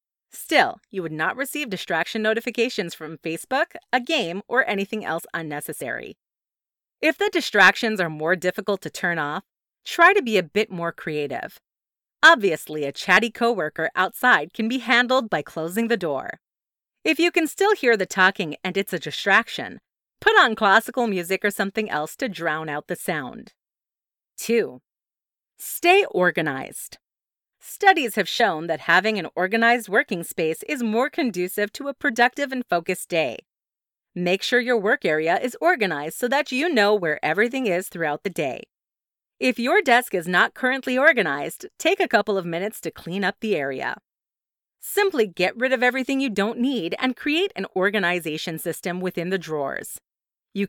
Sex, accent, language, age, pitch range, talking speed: female, American, English, 30-49, 175-255 Hz, 165 wpm